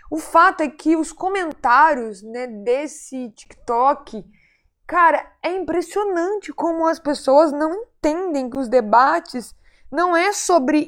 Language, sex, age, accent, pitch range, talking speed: Portuguese, female, 20-39, Brazilian, 255-325 Hz, 125 wpm